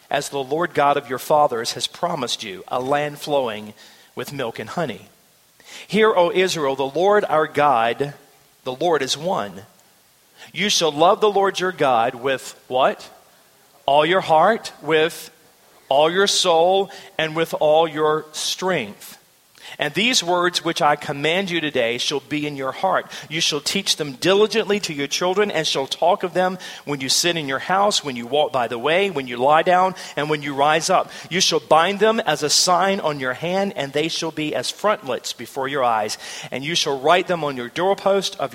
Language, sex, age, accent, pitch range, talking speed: English, male, 40-59, American, 145-195 Hz, 195 wpm